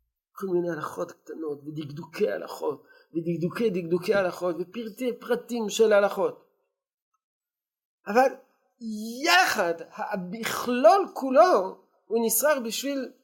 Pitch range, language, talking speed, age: 175-290 Hz, Hebrew, 90 wpm, 50-69